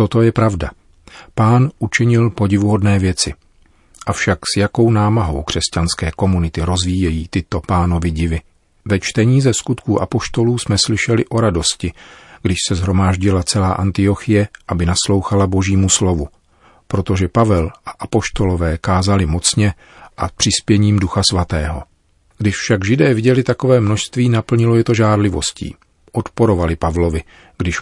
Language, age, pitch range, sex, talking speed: Czech, 40-59, 85-110 Hz, male, 125 wpm